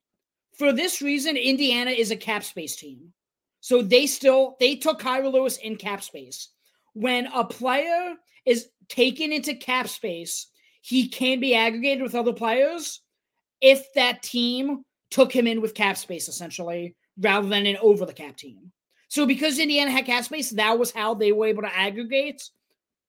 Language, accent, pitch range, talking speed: English, American, 195-265 Hz, 170 wpm